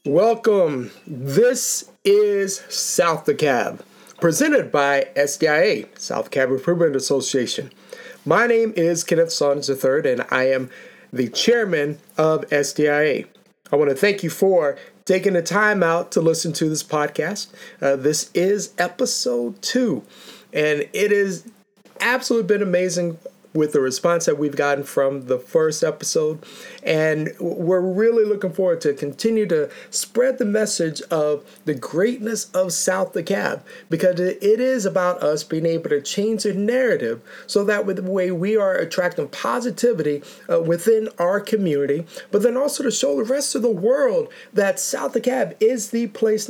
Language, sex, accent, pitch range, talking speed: English, male, American, 155-225 Hz, 155 wpm